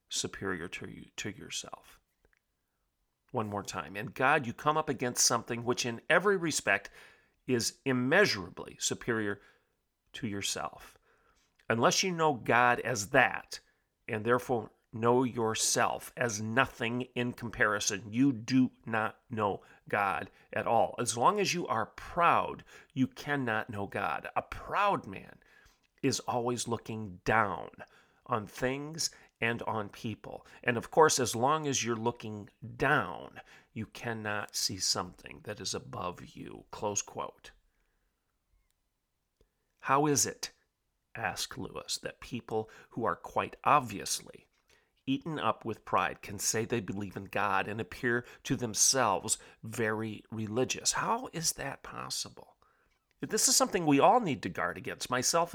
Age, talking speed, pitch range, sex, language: 40-59, 135 wpm, 110-135 Hz, male, English